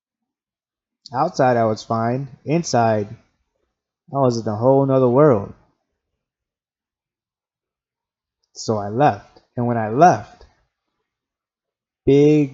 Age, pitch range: 20-39, 115-135 Hz